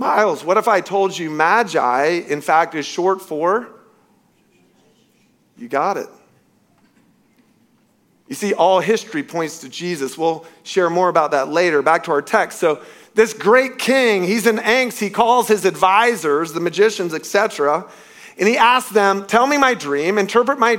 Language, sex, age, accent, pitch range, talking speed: English, male, 40-59, American, 160-215 Hz, 160 wpm